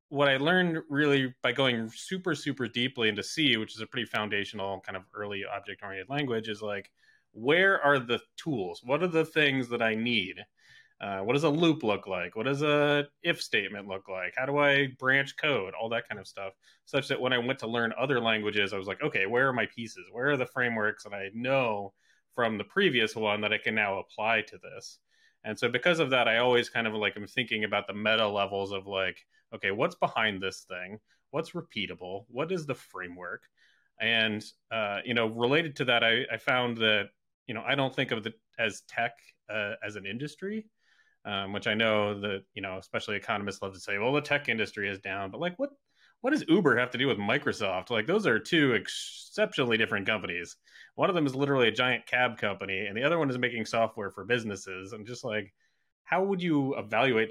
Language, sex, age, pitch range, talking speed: English, male, 20-39, 105-140 Hz, 220 wpm